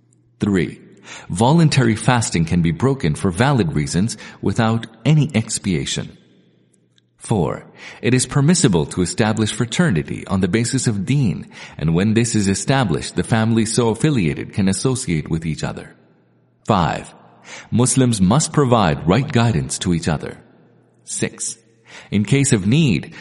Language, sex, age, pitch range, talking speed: English, male, 40-59, 90-125 Hz, 135 wpm